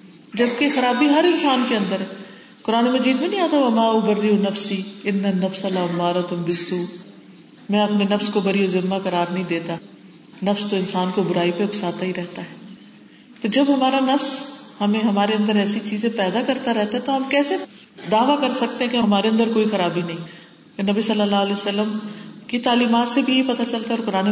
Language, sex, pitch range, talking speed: Urdu, female, 195-260 Hz, 175 wpm